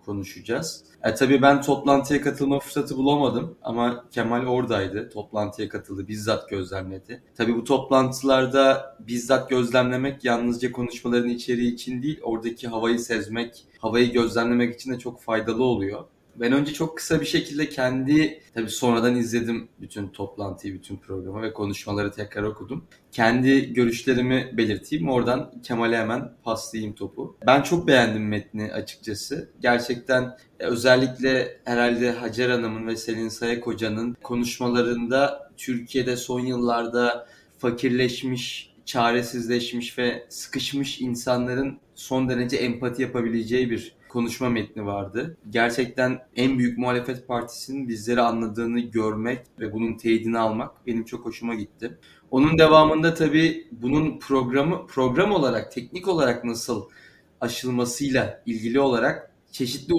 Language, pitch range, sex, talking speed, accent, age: Turkish, 115-130 Hz, male, 120 wpm, native, 30-49